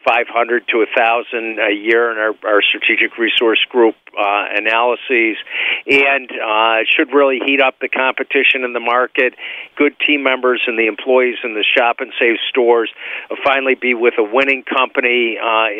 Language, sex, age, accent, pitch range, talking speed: English, male, 50-69, American, 115-130 Hz, 170 wpm